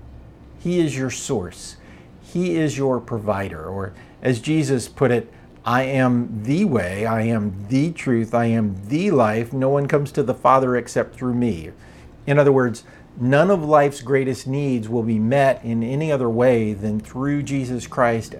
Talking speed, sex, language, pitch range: 175 wpm, male, English, 105-140 Hz